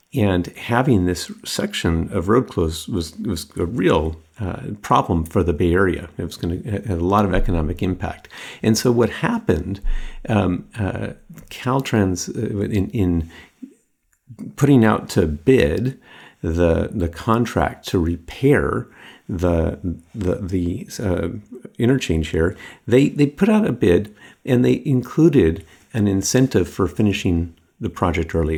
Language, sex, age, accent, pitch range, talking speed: English, male, 50-69, American, 85-115 Hz, 145 wpm